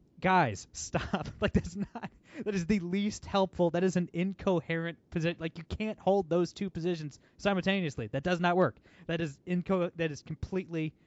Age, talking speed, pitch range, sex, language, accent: 20-39, 180 wpm, 125-165 Hz, male, English, American